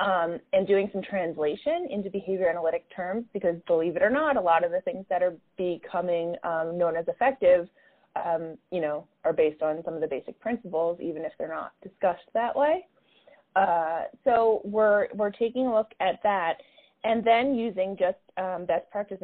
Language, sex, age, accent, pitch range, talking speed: English, female, 30-49, American, 165-215 Hz, 185 wpm